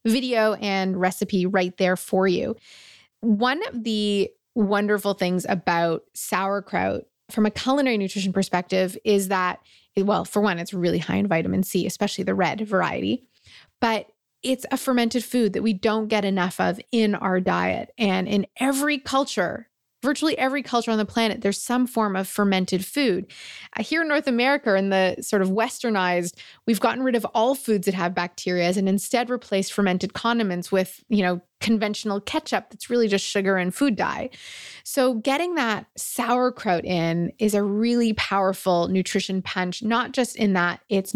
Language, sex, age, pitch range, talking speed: English, female, 20-39, 185-235 Hz, 170 wpm